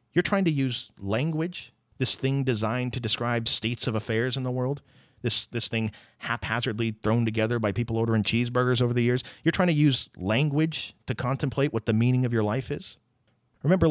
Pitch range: 115-150 Hz